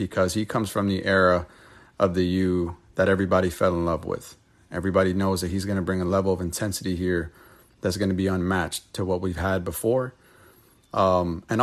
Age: 30-49